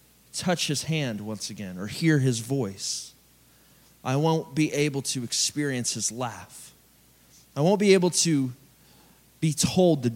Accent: American